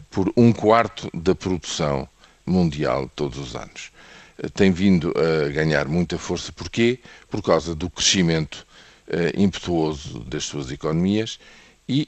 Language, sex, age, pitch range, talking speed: Portuguese, male, 50-69, 80-105 Hz, 130 wpm